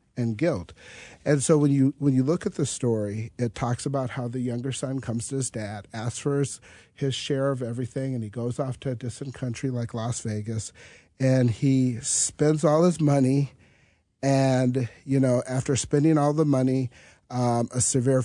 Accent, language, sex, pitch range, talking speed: American, English, male, 115-140 Hz, 190 wpm